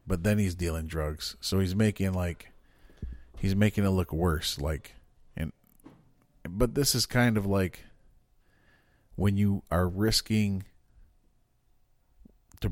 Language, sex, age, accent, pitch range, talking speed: English, male, 40-59, American, 85-100 Hz, 125 wpm